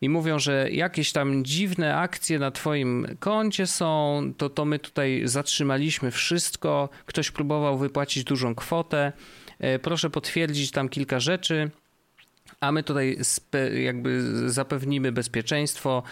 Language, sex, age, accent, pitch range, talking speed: Polish, male, 40-59, native, 115-150 Hz, 125 wpm